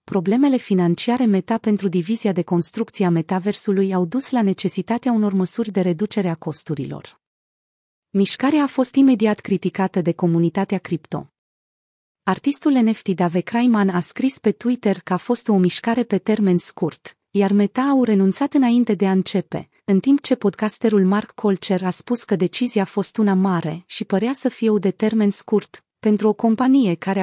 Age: 30-49